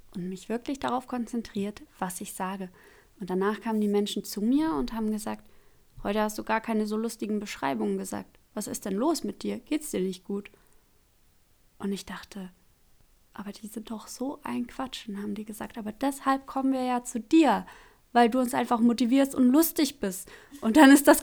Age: 20-39